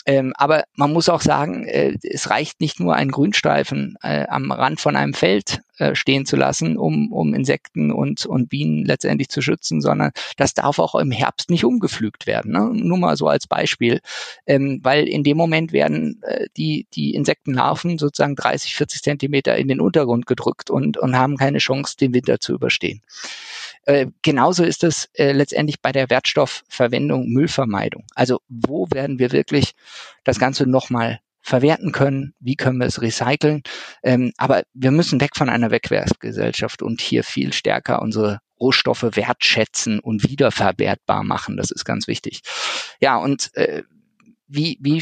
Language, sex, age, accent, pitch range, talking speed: German, male, 50-69, German, 115-150 Hz, 165 wpm